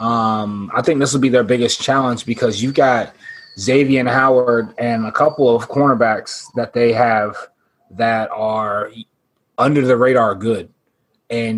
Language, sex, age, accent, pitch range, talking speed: English, male, 20-39, American, 115-130 Hz, 150 wpm